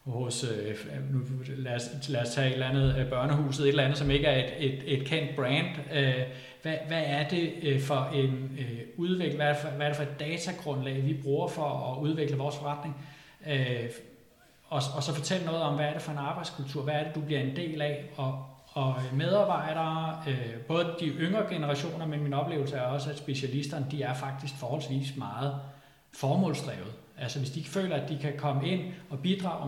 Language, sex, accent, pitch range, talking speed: Danish, male, native, 135-155 Hz, 200 wpm